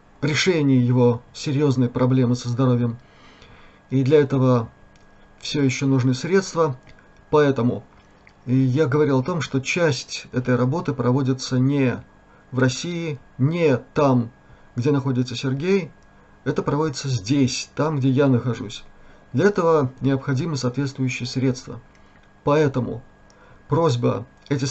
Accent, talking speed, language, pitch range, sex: native, 110 wpm, Russian, 120-150 Hz, male